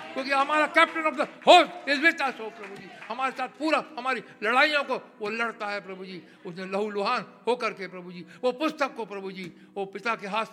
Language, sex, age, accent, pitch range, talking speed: English, male, 60-79, Indian, 180-240 Hz, 210 wpm